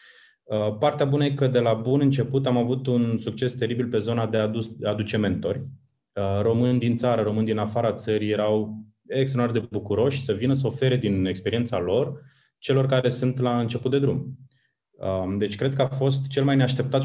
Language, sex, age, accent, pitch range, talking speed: Romanian, male, 20-39, native, 105-130 Hz, 185 wpm